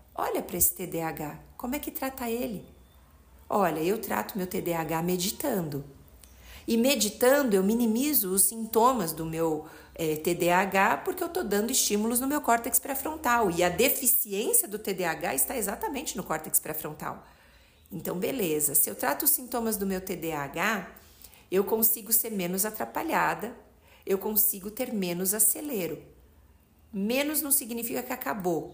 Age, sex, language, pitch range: 50-69, female, Portuguese, 170-245 Hz